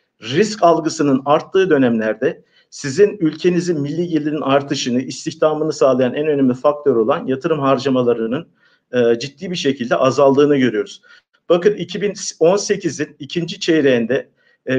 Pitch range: 135-170 Hz